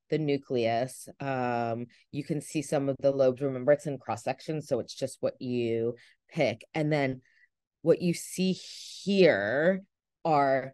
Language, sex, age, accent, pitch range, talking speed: English, female, 20-39, American, 135-175 Hz, 150 wpm